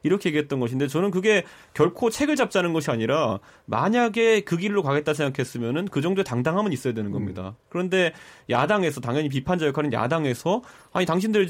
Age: 30-49